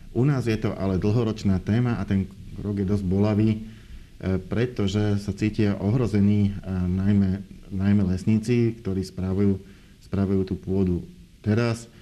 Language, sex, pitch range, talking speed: Slovak, male, 95-105 Hz, 130 wpm